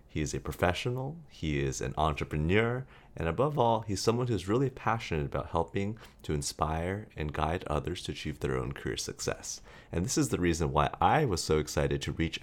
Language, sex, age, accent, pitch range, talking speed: English, male, 30-49, American, 70-90 Hz, 200 wpm